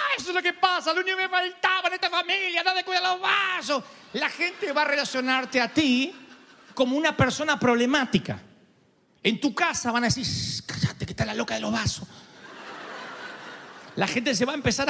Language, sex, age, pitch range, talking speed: Spanish, male, 40-59, 200-315 Hz, 195 wpm